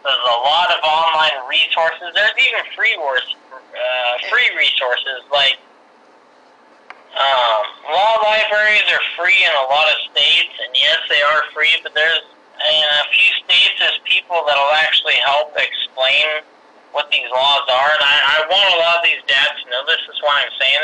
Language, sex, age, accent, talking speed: English, male, 30-49, American, 180 wpm